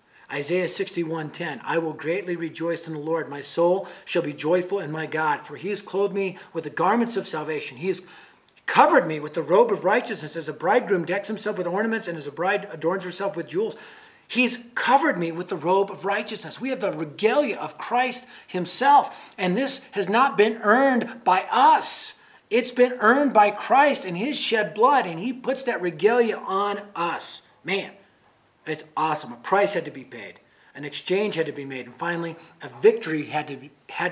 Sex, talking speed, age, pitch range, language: male, 195 wpm, 40-59, 170-215 Hz, English